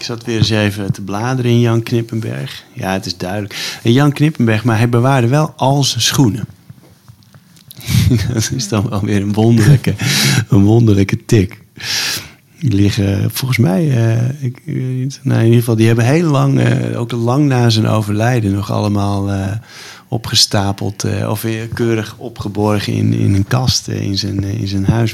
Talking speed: 160 wpm